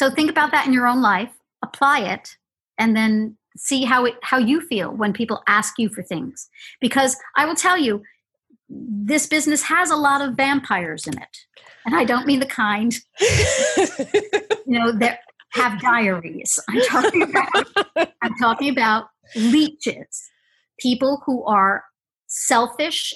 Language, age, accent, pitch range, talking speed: English, 50-69, American, 205-270 Hz, 150 wpm